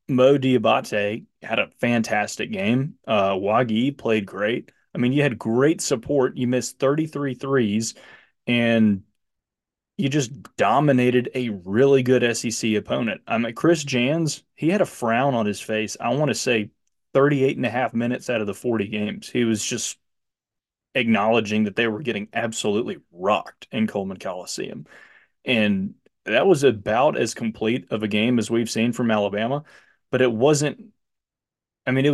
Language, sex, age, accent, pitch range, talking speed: English, male, 30-49, American, 105-130 Hz, 160 wpm